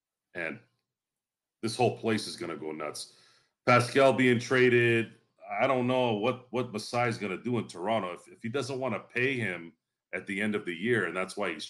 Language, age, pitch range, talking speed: English, 40-59, 95-125 Hz, 195 wpm